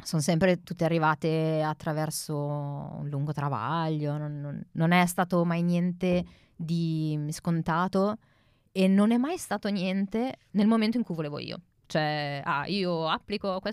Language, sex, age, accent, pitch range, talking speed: Italian, female, 20-39, native, 150-190 Hz, 145 wpm